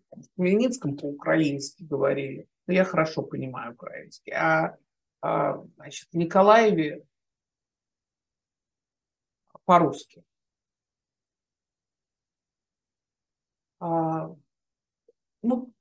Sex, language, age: male, Russian, 50-69